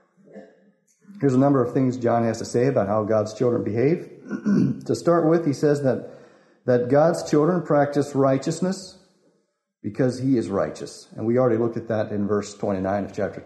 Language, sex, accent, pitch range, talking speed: English, male, American, 110-160 Hz, 180 wpm